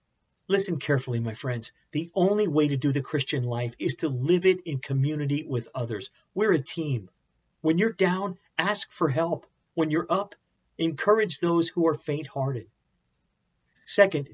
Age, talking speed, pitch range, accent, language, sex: 50-69, 165 wpm, 130-165 Hz, American, English, male